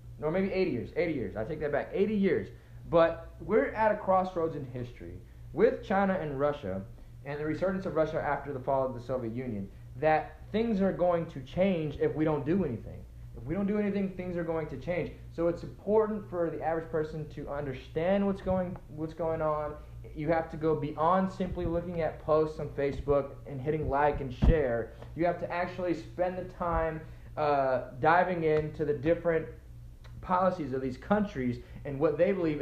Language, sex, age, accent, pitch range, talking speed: English, male, 20-39, American, 135-175 Hz, 195 wpm